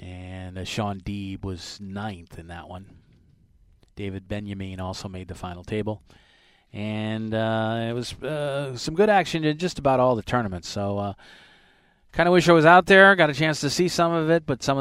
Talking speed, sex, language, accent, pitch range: 200 wpm, male, English, American, 95-130 Hz